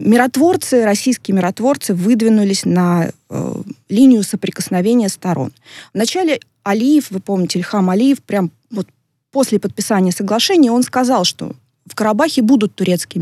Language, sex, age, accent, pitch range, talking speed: Russian, female, 20-39, native, 185-250 Hz, 125 wpm